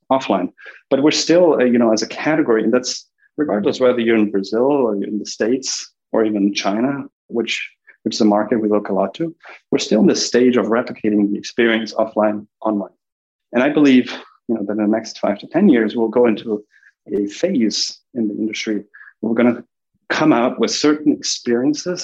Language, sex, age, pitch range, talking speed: English, male, 30-49, 105-125 Hz, 205 wpm